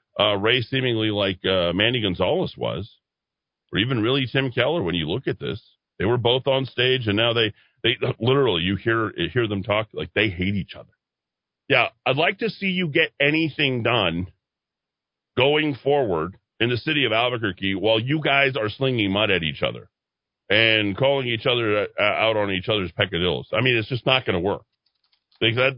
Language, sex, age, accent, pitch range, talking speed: English, male, 40-59, American, 110-160 Hz, 190 wpm